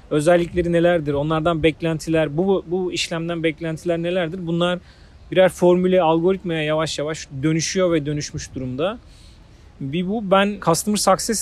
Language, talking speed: Turkish, 125 wpm